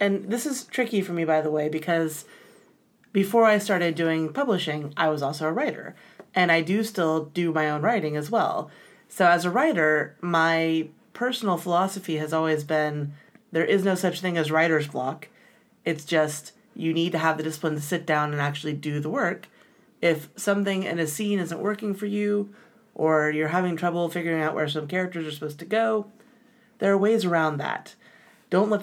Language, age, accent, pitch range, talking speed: English, 30-49, American, 155-205 Hz, 195 wpm